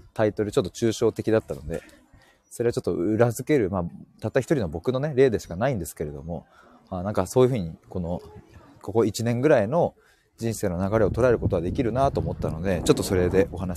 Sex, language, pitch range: male, Japanese, 90-130 Hz